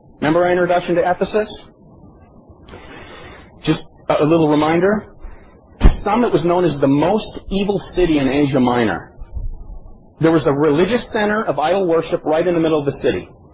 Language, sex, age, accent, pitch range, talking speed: English, male, 30-49, American, 140-190 Hz, 165 wpm